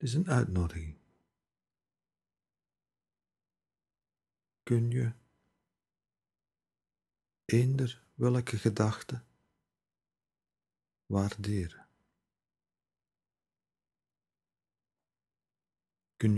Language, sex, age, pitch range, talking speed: Dutch, male, 50-69, 90-115 Hz, 40 wpm